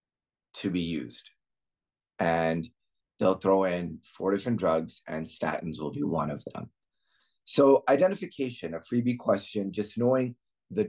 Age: 30-49